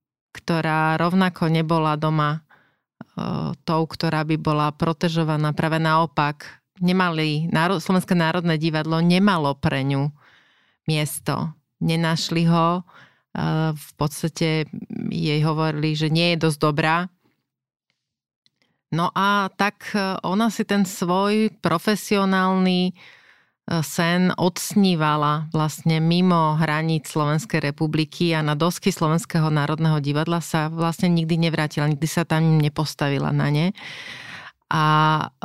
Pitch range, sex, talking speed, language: 155-180 Hz, female, 105 wpm, Slovak